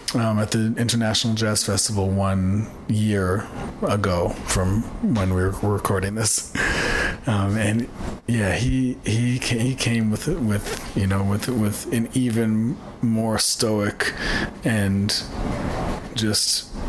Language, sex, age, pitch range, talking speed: English, male, 30-49, 100-120 Hz, 125 wpm